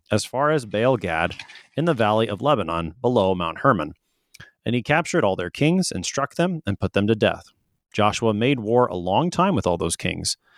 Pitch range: 100-140 Hz